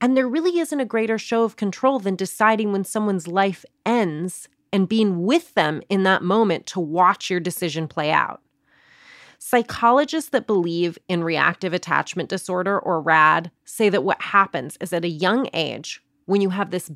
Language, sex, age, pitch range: English, female, 30-49, 175-220 Hz